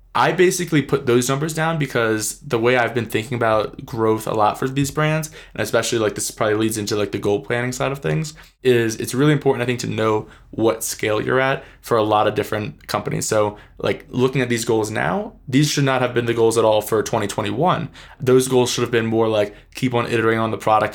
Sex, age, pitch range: male, 20-39, 105-125 Hz